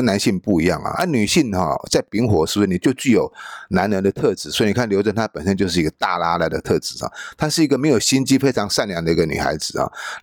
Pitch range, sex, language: 100-160 Hz, male, Chinese